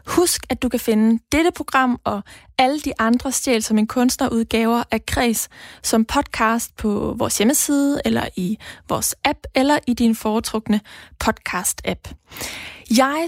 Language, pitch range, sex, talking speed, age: Danish, 220-260 Hz, female, 145 wpm, 20-39